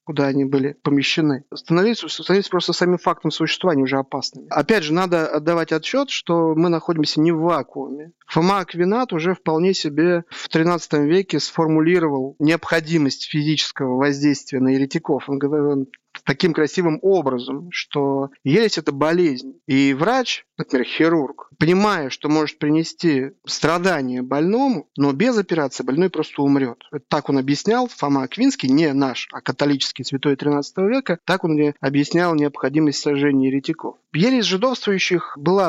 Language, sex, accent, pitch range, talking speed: Russian, male, native, 145-180 Hz, 140 wpm